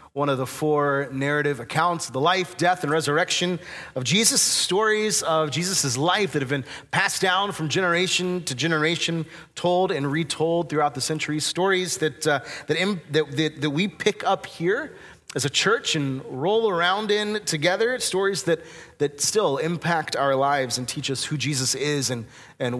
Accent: American